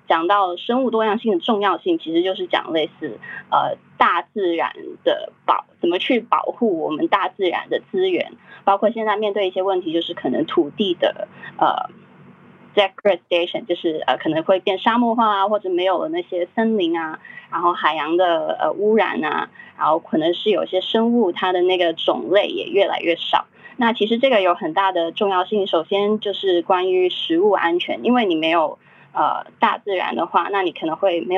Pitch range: 180-295 Hz